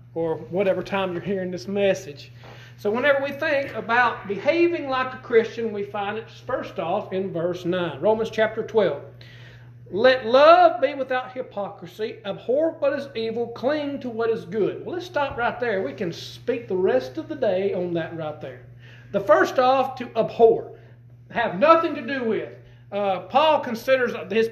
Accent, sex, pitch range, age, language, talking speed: American, male, 185-260 Hz, 40-59, English, 175 wpm